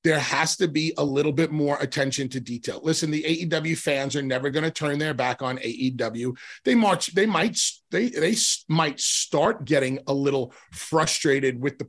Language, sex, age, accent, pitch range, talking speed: English, male, 30-49, American, 140-175 Hz, 190 wpm